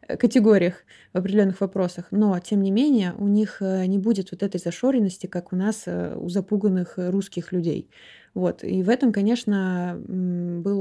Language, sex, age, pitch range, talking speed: Russian, female, 20-39, 185-220 Hz, 155 wpm